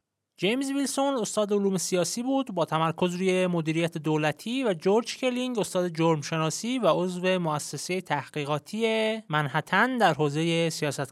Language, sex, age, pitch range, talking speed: Persian, male, 30-49, 165-230 Hz, 135 wpm